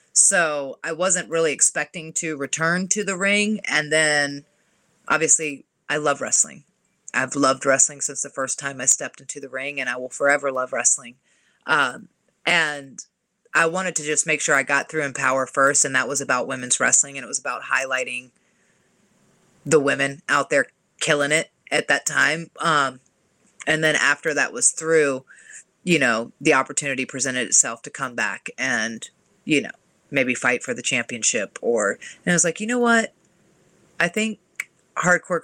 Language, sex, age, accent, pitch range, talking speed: English, female, 30-49, American, 130-165 Hz, 175 wpm